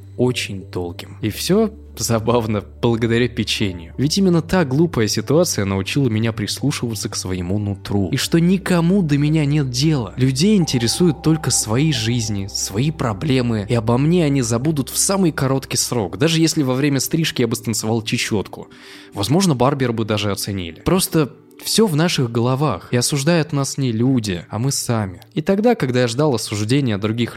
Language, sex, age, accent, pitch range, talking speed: Russian, male, 20-39, native, 105-145 Hz, 165 wpm